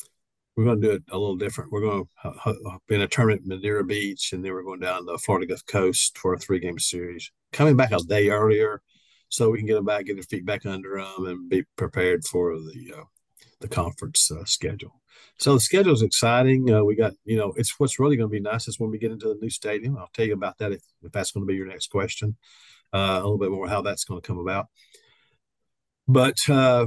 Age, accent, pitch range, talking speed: 50-69, American, 100-120 Hz, 250 wpm